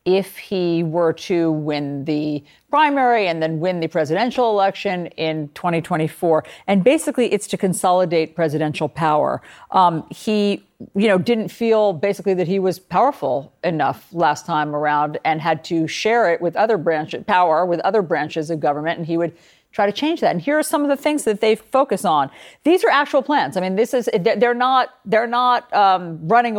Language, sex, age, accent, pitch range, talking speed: English, female, 50-69, American, 165-235 Hz, 185 wpm